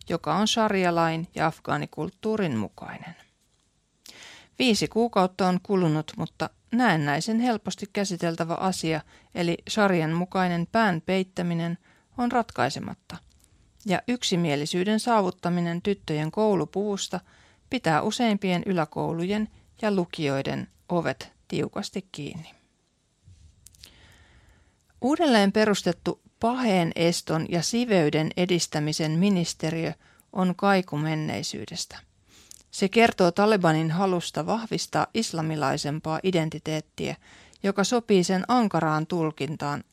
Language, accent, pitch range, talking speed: Finnish, native, 155-205 Hz, 85 wpm